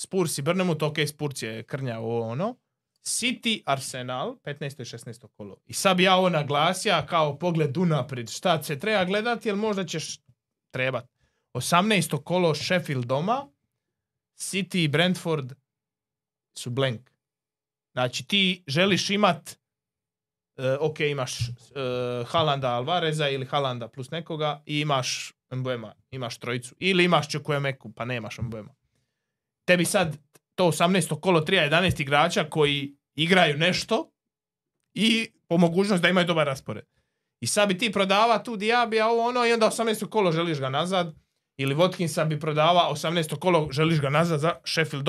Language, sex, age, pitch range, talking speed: Croatian, male, 20-39, 135-185 Hz, 145 wpm